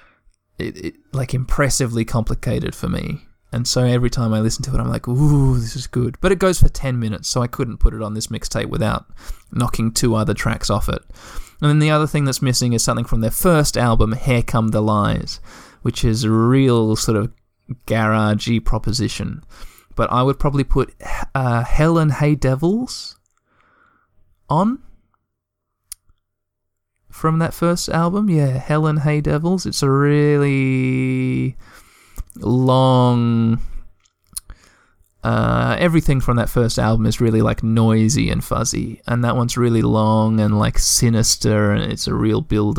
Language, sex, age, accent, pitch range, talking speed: English, male, 20-39, Australian, 110-135 Hz, 165 wpm